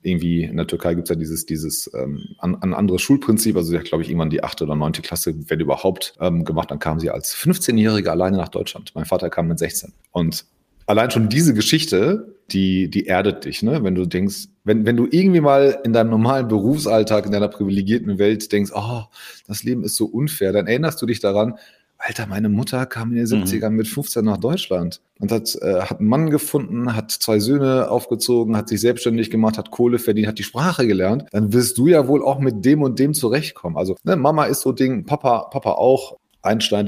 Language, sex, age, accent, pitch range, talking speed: German, male, 30-49, German, 95-125 Hz, 220 wpm